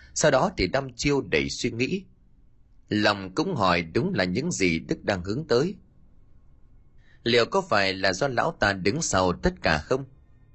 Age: 30-49